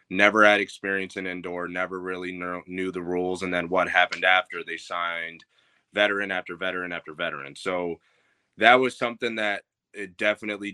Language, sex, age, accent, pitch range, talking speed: English, male, 20-39, American, 90-100 Hz, 160 wpm